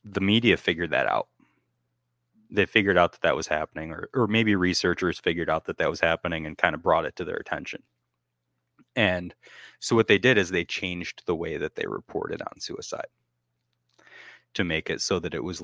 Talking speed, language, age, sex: 200 wpm, English, 30-49, male